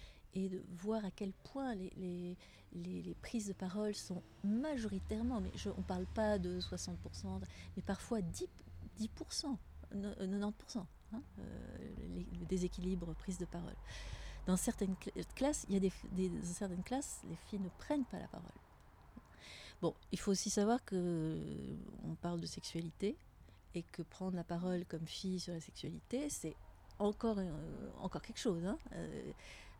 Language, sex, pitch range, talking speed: English, female, 150-200 Hz, 155 wpm